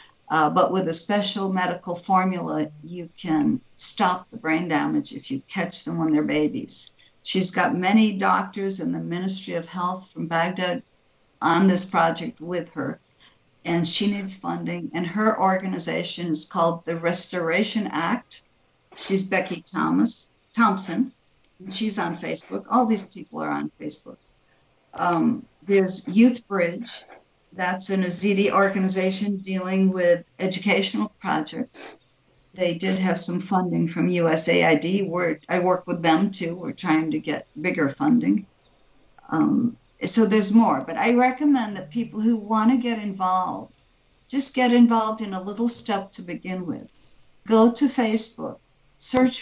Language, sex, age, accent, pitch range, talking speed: English, female, 60-79, American, 175-220 Hz, 145 wpm